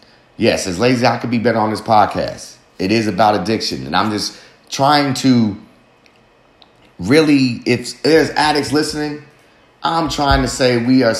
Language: English